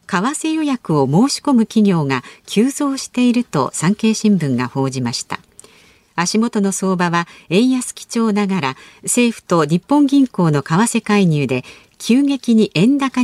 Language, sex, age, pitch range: Japanese, female, 50-69, 160-240 Hz